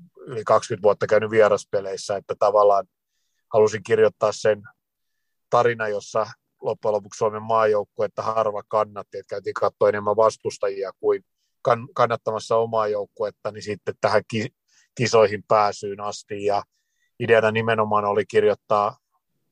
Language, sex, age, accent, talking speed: Finnish, male, 50-69, native, 115 wpm